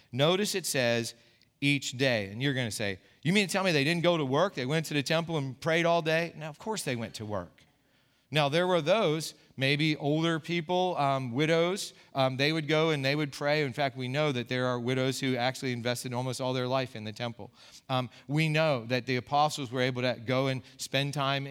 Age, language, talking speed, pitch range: 40-59, English, 235 wpm, 130-170 Hz